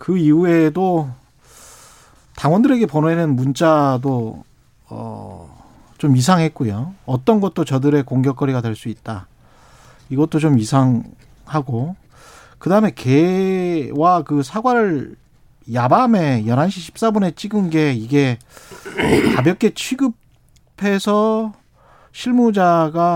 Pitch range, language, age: 130-190 Hz, Korean, 40-59